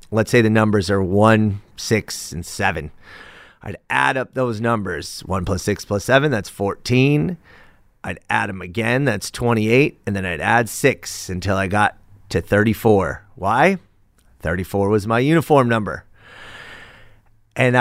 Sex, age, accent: male, 30-49, American